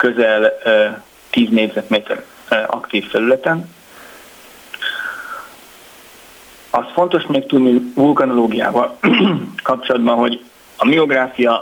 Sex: male